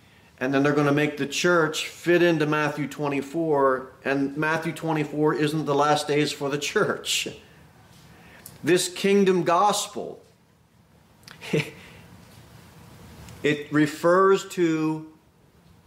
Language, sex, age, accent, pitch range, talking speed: English, male, 40-59, American, 150-180 Hz, 105 wpm